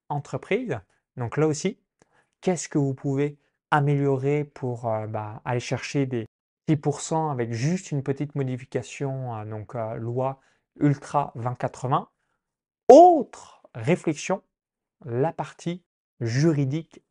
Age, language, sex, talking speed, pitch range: 20-39, French, male, 110 wpm, 120-150 Hz